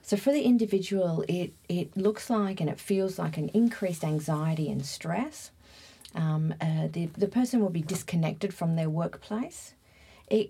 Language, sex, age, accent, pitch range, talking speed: English, female, 40-59, Australian, 160-210 Hz, 165 wpm